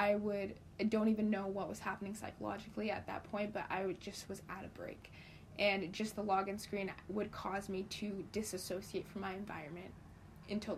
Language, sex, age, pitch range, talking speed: English, female, 20-39, 200-235 Hz, 195 wpm